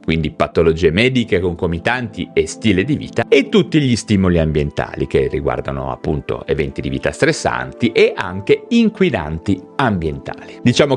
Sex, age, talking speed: male, 30-49, 135 wpm